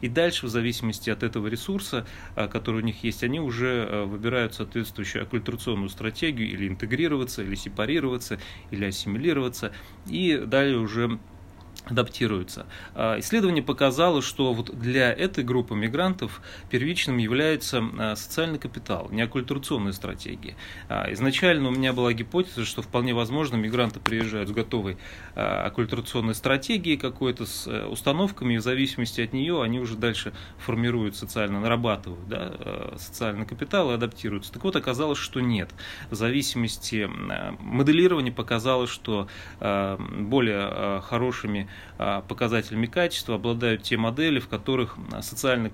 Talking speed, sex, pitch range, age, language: 125 wpm, male, 105-125 Hz, 30-49, Russian